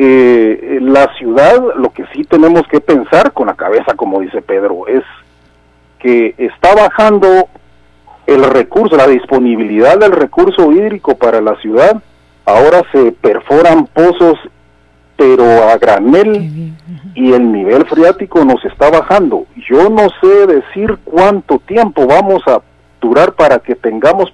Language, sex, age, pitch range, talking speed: Spanish, male, 50-69, 115-195 Hz, 135 wpm